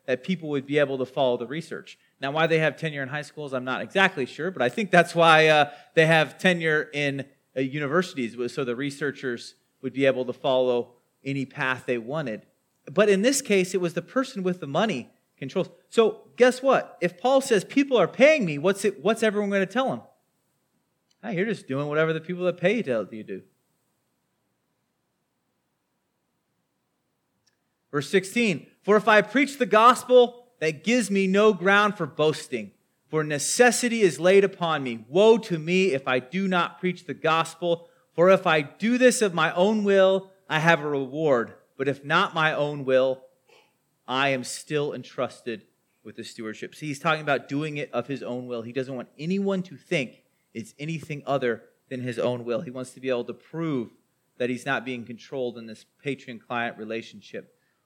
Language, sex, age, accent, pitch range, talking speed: English, male, 30-49, American, 135-190 Hz, 190 wpm